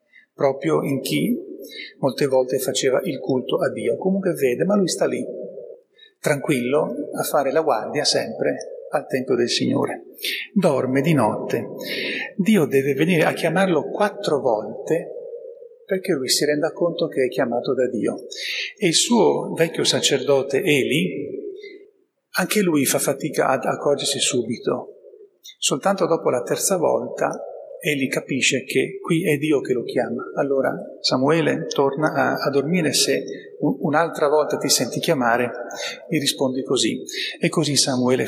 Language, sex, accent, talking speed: Italian, male, native, 145 wpm